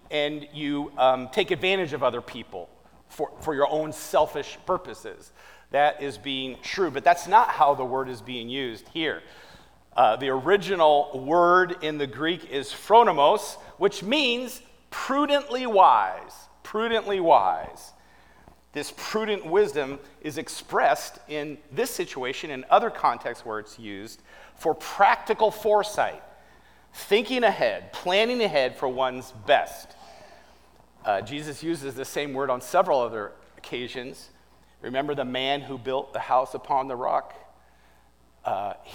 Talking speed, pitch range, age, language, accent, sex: 135 wpm, 130-190 Hz, 40-59, English, American, male